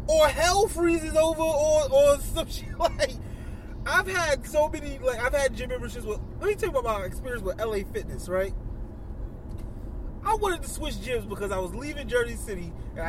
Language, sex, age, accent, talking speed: English, male, 20-39, American, 190 wpm